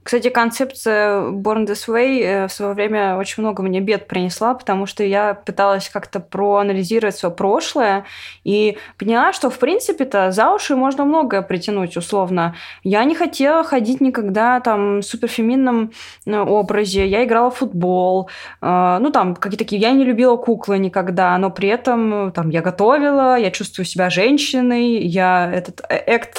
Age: 20-39